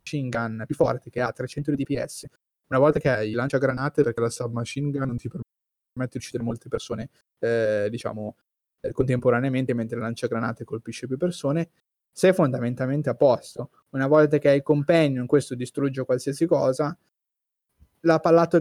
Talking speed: 160 wpm